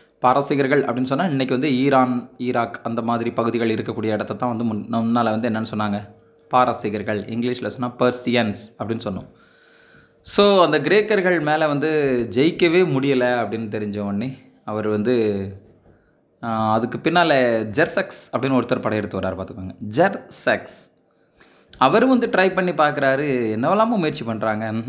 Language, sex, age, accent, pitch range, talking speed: Tamil, male, 20-39, native, 110-145 Hz, 125 wpm